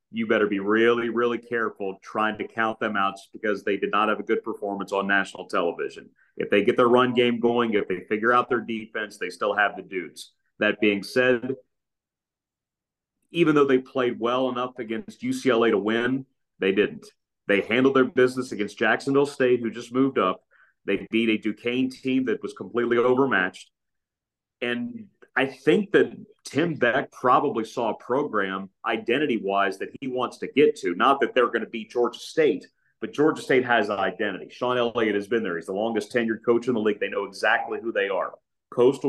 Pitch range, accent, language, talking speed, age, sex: 110-135 Hz, American, English, 195 wpm, 40-59, male